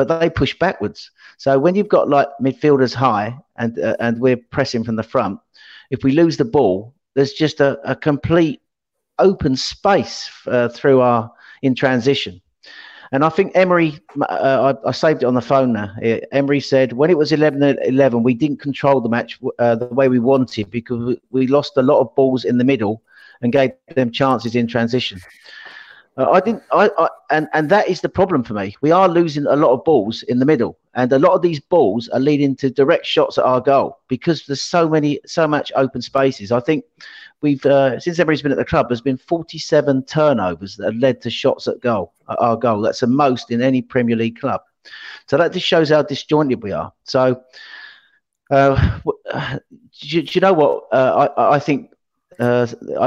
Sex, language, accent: male, English, British